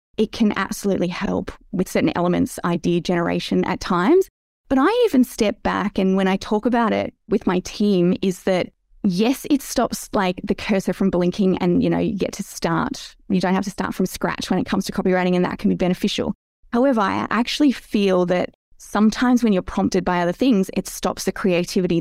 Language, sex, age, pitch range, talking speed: English, female, 20-39, 180-220 Hz, 205 wpm